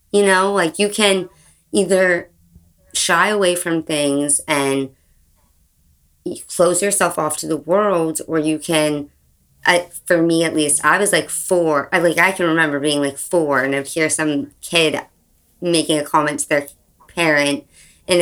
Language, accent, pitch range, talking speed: English, American, 145-180 Hz, 165 wpm